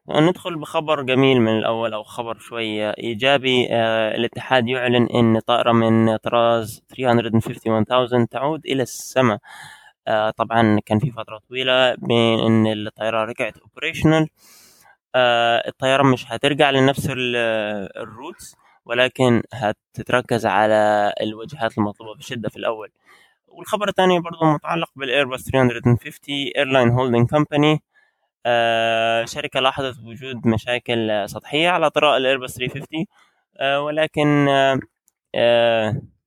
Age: 20-39